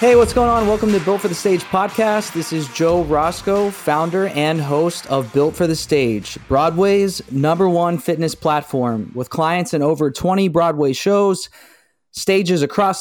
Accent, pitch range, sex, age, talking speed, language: American, 145-180 Hz, male, 30-49, 170 wpm, English